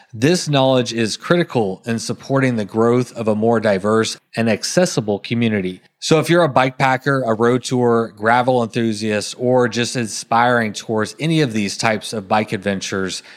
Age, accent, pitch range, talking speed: 30-49, American, 110-130 Hz, 160 wpm